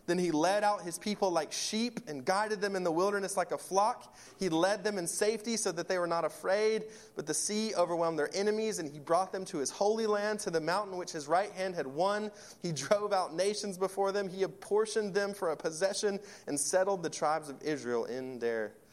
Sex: male